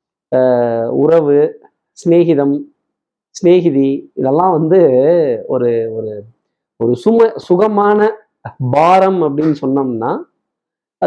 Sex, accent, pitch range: male, native, 125-170 Hz